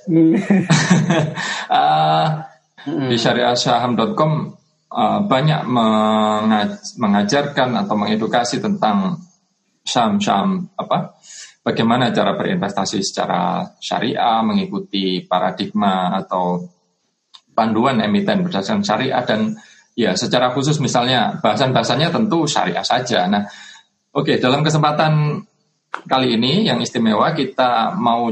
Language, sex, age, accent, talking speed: Indonesian, male, 20-39, native, 95 wpm